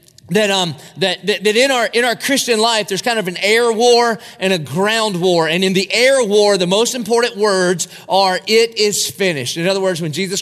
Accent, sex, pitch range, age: American, male, 165-210 Hz, 30-49